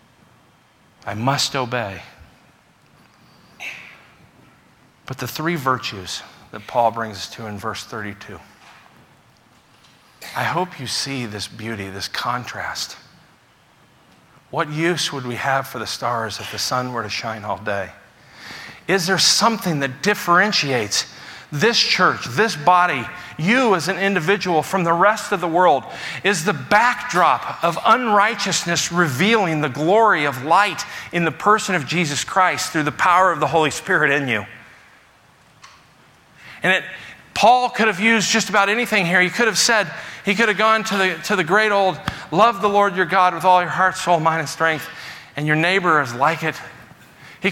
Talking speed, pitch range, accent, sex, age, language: 160 wpm, 135-205 Hz, American, male, 50-69, English